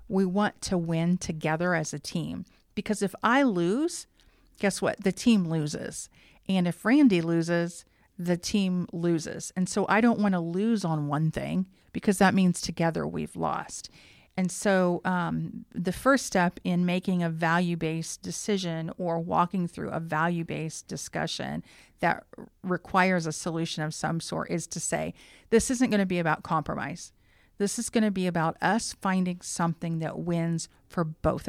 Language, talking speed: English, 170 wpm